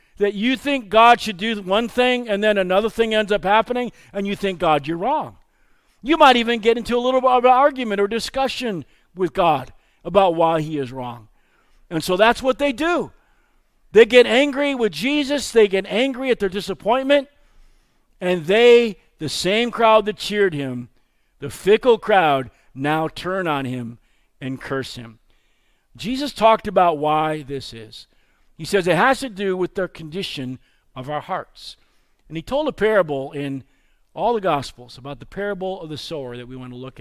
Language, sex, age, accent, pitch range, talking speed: English, male, 50-69, American, 150-230 Hz, 185 wpm